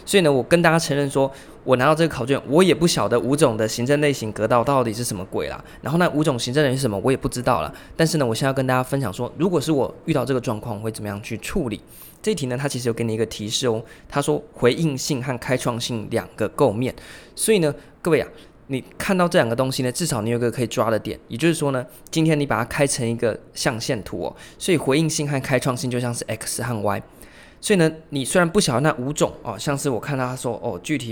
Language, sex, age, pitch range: Chinese, male, 20-39, 120-150 Hz